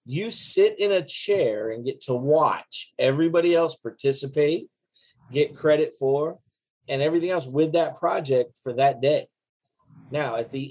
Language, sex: English, male